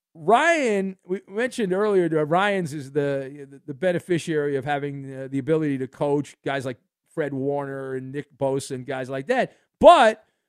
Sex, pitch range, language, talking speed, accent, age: male, 145-210 Hz, English, 175 wpm, American, 50-69